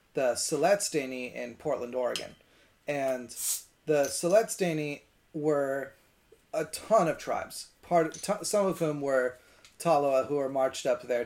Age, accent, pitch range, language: 30-49, American, 120-150 Hz, English